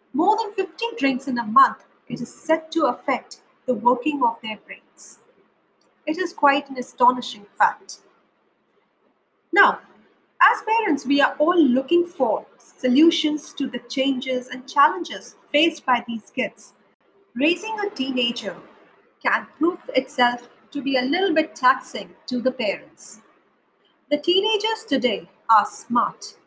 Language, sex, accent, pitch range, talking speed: English, female, Indian, 250-325 Hz, 140 wpm